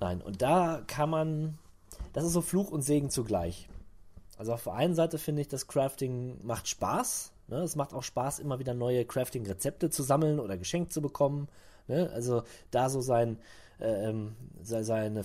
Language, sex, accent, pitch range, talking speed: German, male, German, 100-150 Hz, 165 wpm